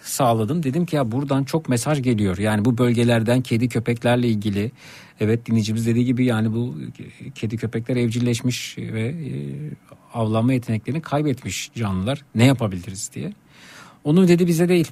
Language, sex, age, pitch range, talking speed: Turkish, male, 50-69, 115-145 Hz, 140 wpm